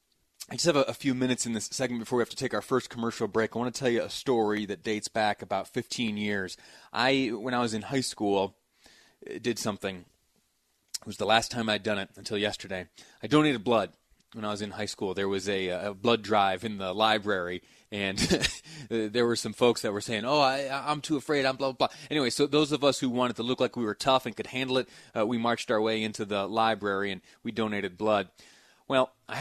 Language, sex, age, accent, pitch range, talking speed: English, male, 30-49, American, 105-130 Hz, 235 wpm